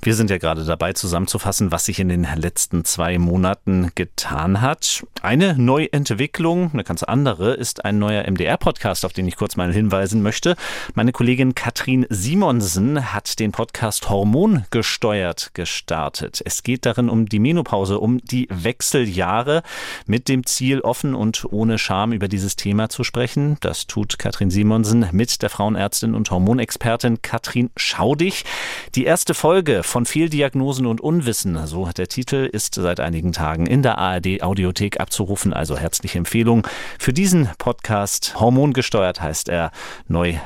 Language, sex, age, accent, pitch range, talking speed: German, male, 40-59, German, 95-125 Hz, 150 wpm